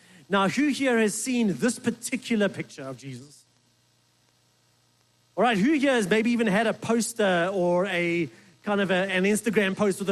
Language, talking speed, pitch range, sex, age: English, 165 wpm, 185-230 Hz, male, 30-49